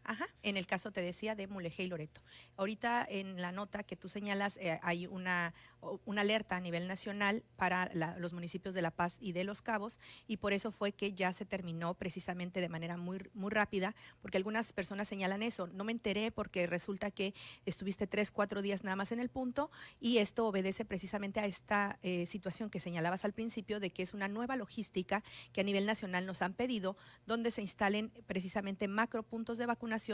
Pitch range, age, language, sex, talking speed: 185-220 Hz, 40-59, Spanish, female, 205 wpm